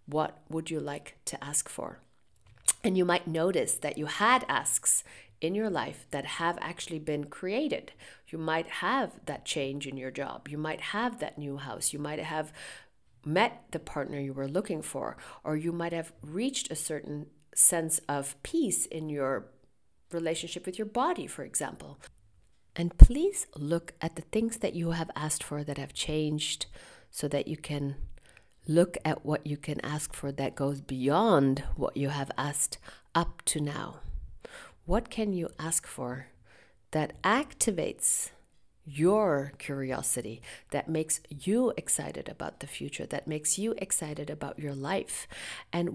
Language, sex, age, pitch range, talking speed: English, female, 40-59, 140-175 Hz, 160 wpm